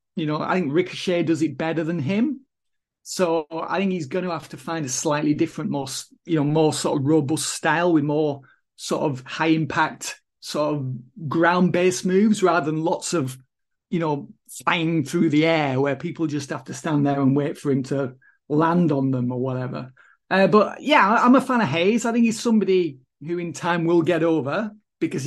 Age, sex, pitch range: 30-49, male, 150-185 Hz